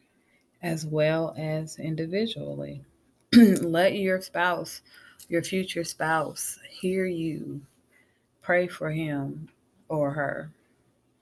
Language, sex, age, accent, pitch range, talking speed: English, female, 20-39, American, 155-180 Hz, 90 wpm